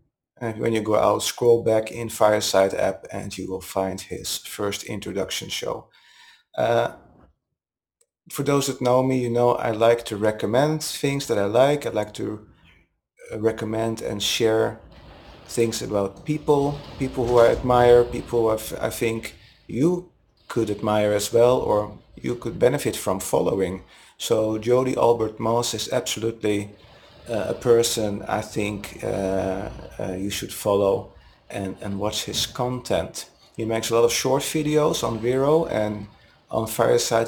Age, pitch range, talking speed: 30-49, 105-130 Hz, 155 wpm